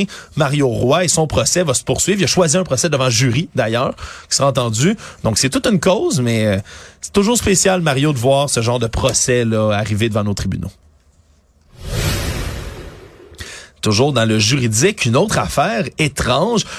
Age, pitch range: 30-49, 125-185 Hz